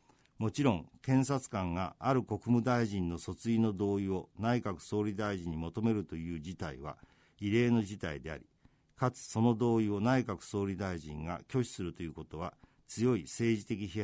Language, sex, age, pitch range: Japanese, male, 50-69, 90-120 Hz